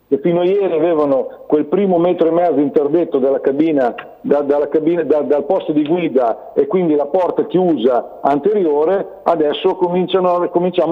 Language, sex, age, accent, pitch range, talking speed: Italian, male, 50-69, native, 155-220 Hz, 165 wpm